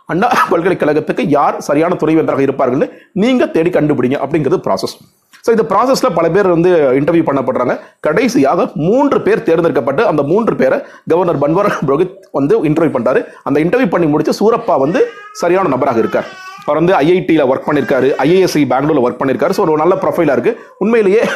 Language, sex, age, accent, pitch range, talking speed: Tamil, male, 30-49, native, 140-205 Hz, 155 wpm